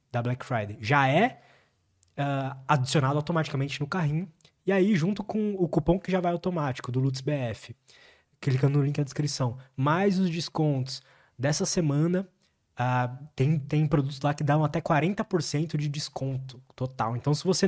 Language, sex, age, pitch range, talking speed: Portuguese, male, 20-39, 130-165 Hz, 165 wpm